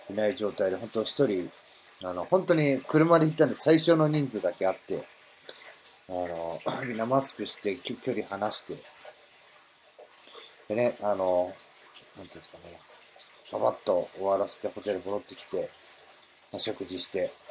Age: 40-59